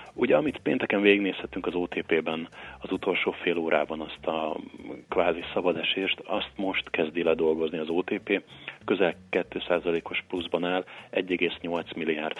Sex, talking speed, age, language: male, 130 wpm, 40-59, Hungarian